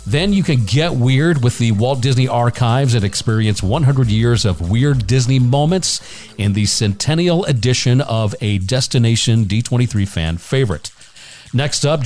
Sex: male